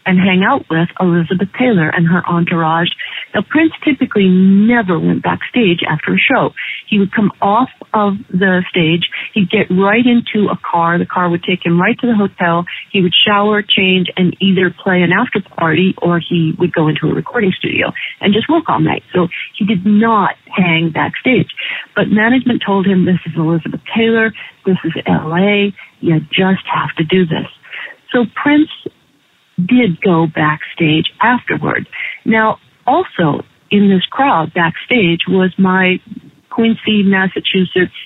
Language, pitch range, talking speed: English, 175-215 Hz, 160 wpm